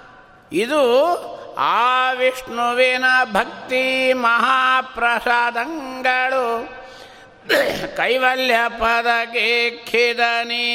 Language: Kannada